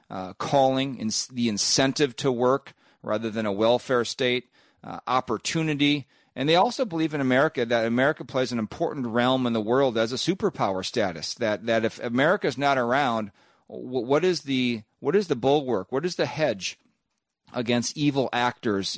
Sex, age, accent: male, 40-59, American